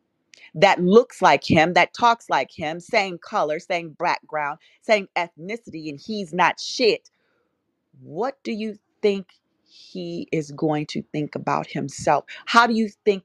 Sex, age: female, 40-59